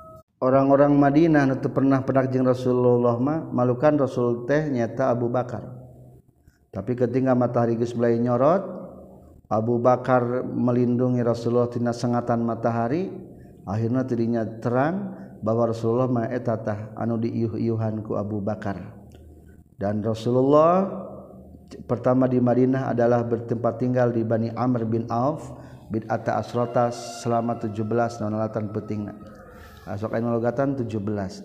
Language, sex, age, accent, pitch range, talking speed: Indonesian, male, 40-59, native, 115-125 Hz, 115 wpm